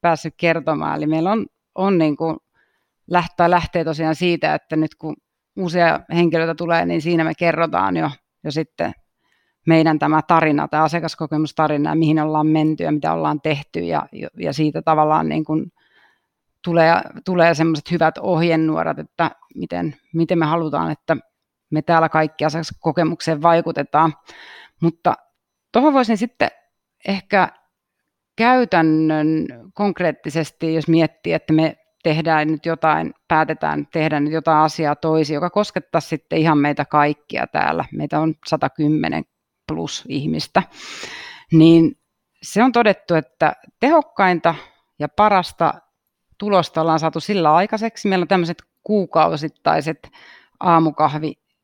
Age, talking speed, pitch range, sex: 30-49, 130 wpm, 155-175 Hz, female